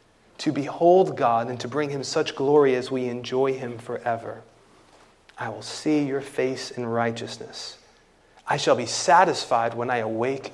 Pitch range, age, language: 120-155 Hz, 30-49, English